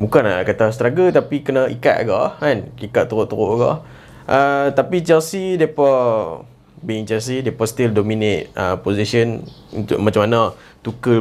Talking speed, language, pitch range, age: 145 wpm, Malay, 110-155 Hz, 20-39